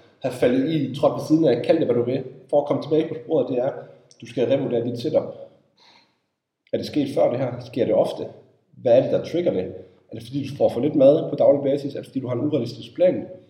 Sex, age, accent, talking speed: male, 30-49, native, 270 wpm